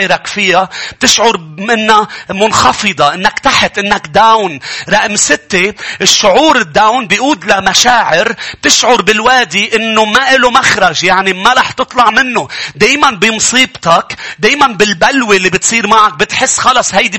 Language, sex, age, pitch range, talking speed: English, male, 40-59, 205-265 Hz, 120 wpm